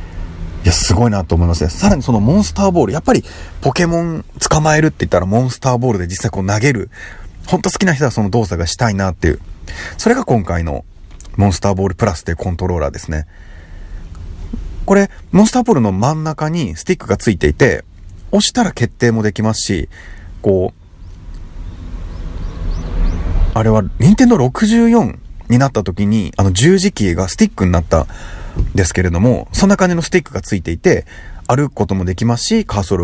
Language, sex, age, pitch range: Japanese, male, 40-59, 85-130 Hz